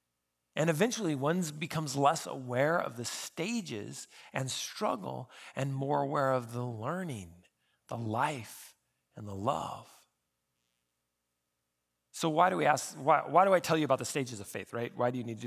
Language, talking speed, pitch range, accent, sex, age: English, 170 wpm, 125-170 Hz, American, male, 40-59